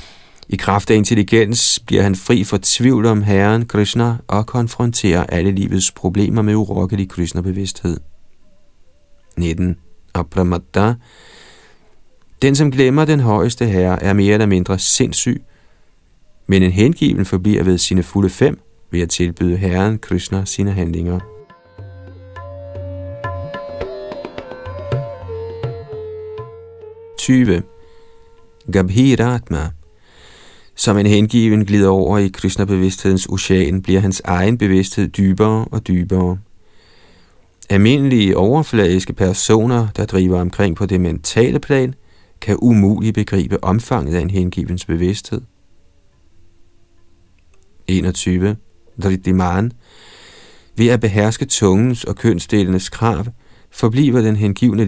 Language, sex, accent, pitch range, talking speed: Danish, male, native, 90-115 Hz, 105 wpm